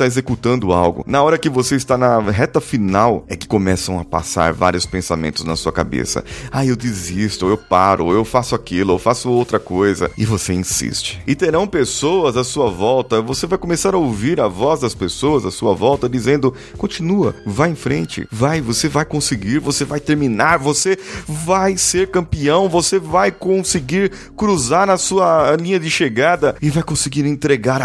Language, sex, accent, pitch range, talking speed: Portuguese, male, Brazilian, 110-160 Hz, 180 wpm